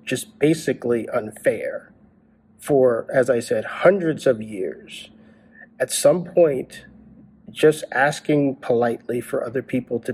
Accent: American